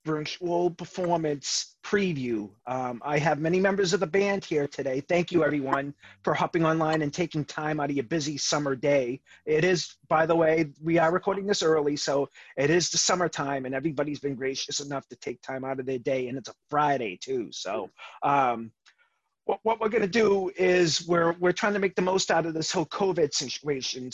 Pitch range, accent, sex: 140-175 Hz, American, male